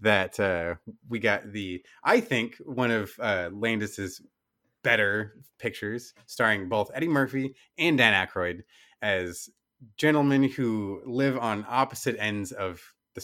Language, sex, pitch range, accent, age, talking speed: English, male, 100-125 Hz, American, 30-49, 130 wpm